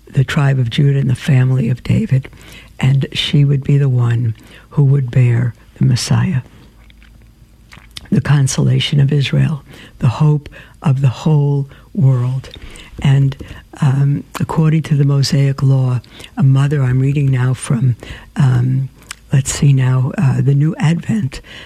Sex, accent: female, American